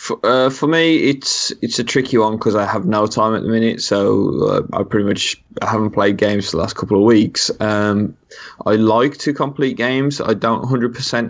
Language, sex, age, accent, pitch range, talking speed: English, male, 20-39, British, 105-125 Hz, 205 wpm